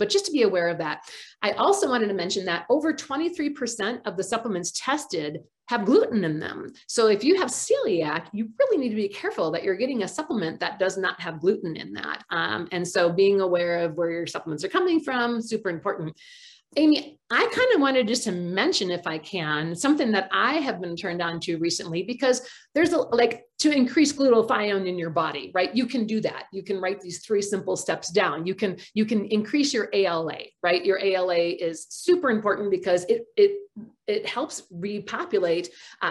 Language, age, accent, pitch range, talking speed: English, 40-59, American, 175-260 Hz, 205 wpm